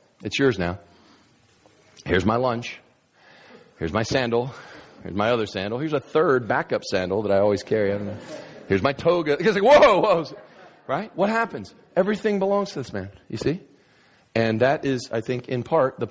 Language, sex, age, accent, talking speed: English, male, 40-59, American, 185 wpm